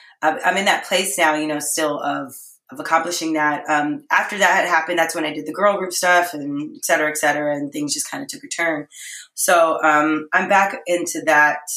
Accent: American